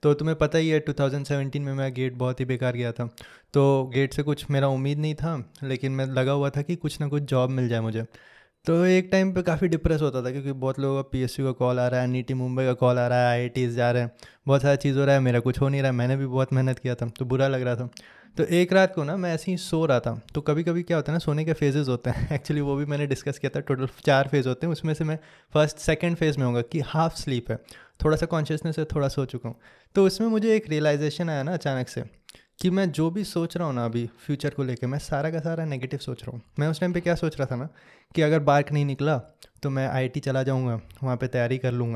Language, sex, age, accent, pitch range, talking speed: English, male, 20-39, Indian, 130-160 Hz, 230 wpm